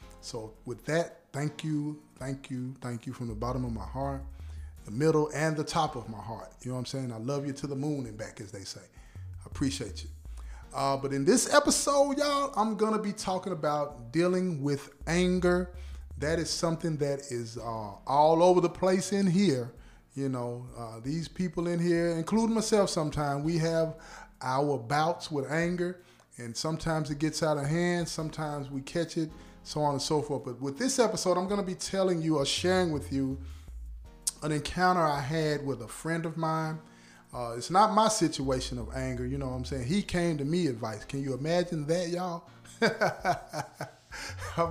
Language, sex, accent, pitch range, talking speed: English, male, American, 120-170 Hz, 195 wpm